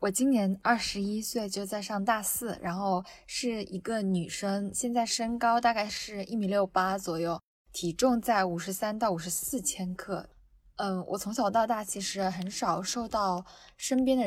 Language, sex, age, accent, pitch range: Chinese, female, 10-29, native, 185-230 Hz